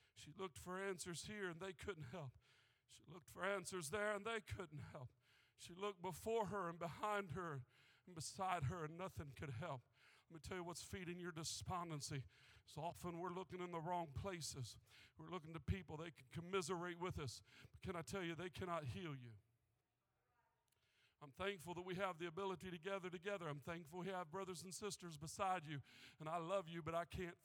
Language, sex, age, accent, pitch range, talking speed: English, male, 50-69, American, 125-185 Hz, 200 wpm